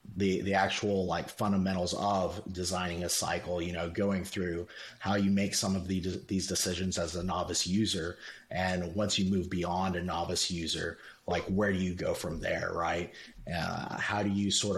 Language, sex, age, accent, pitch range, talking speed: English, male, 30-49, American, 85-100 Hz, 190 wpm